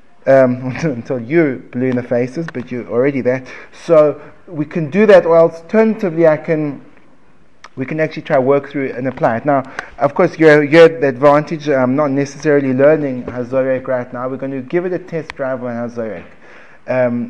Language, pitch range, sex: English, 130-170 Hz, male